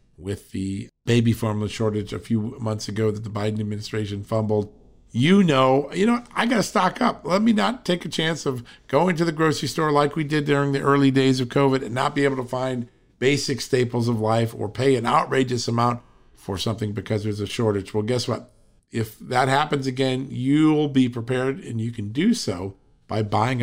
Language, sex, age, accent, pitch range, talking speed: English, male, 50-69, American, 110-140 Hz, 210 wpm